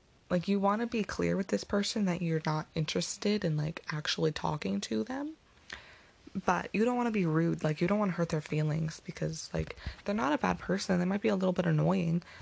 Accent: American